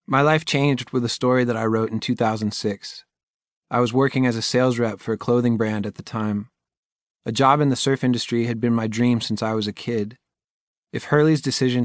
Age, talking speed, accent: 30-49, 220 wpm, American